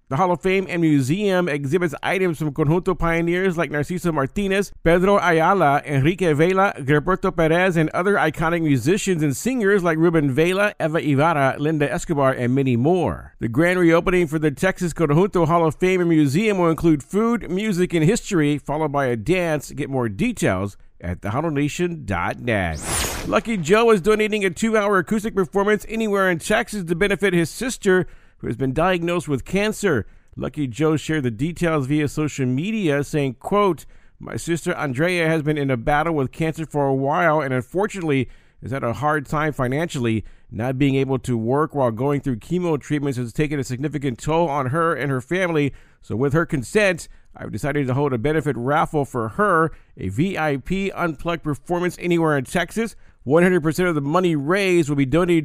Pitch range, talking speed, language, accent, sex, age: 140-185 Hz, 175 wpm, English, American, male, 50-69